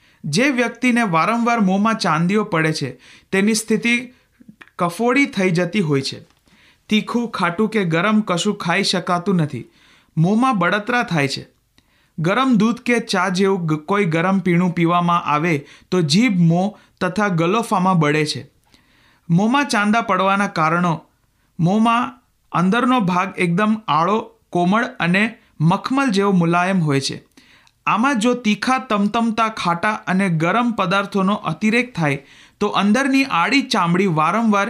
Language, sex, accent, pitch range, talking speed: Hindi, male, native, 165-225 Hz, 95 wpm